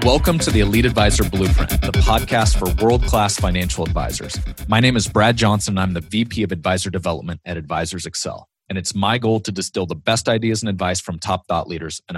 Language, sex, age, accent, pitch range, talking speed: English, male, 30-49, American, 90-110 Hz, 215 wpm